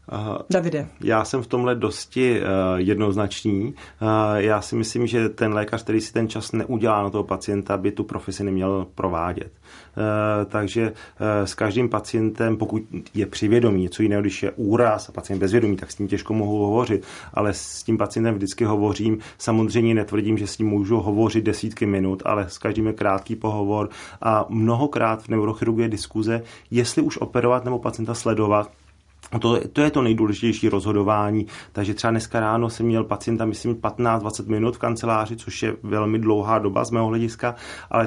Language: Czech